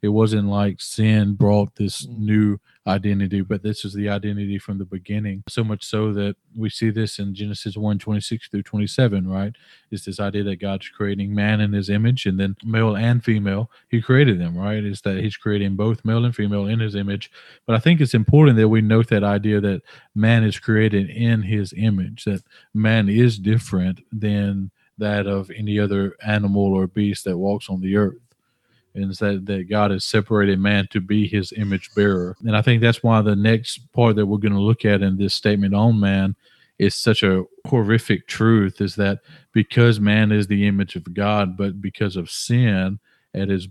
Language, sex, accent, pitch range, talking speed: English, male, American, 100-110 Hz, 200 wpm